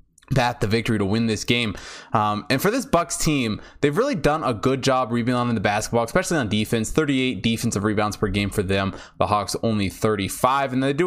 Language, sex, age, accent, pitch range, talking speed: English, male, 20-39, American, 105-140 Hz, 210 wpm